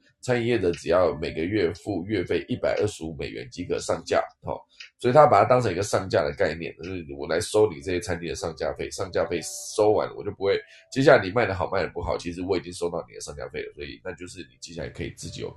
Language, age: Chinese, 20-39